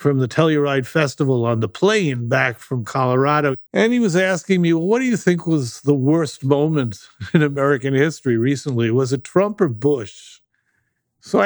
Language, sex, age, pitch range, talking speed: English, male, 50-69, 135-185 Hz, 180 wpm